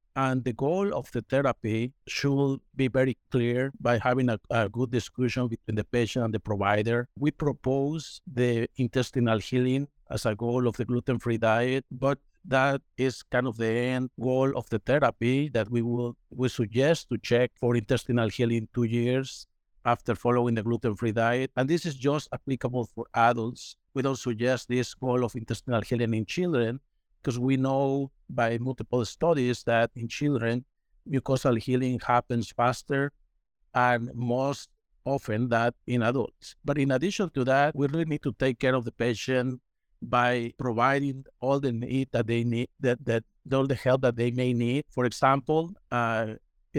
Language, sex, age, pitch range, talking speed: English, male, 50-69, 120-135 Hz, 170 wpm